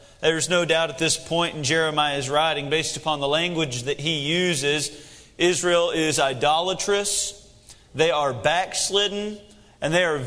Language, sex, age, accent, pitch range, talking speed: English, male, 40-59, American, 160-200 Hz, 145 wpm